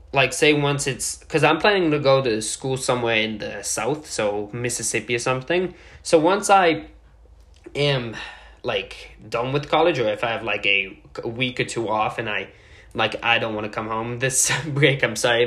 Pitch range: 115-155 Hz